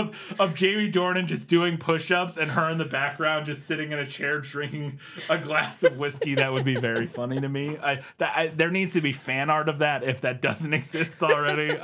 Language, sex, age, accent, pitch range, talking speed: English, male, 20-39, American, 125-165 Hz, 230 wpm